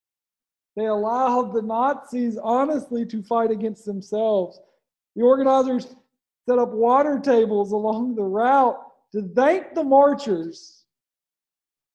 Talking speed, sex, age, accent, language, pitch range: 110 wpm, male, 40-59, American, English, 175-225 Hz